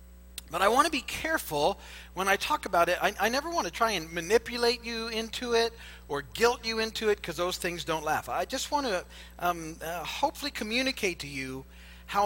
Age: 50-69